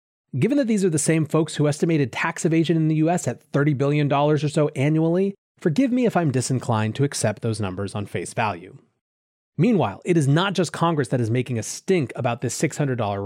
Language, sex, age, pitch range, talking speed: English, male, 30-49, 125-165 Hz, 210 wpm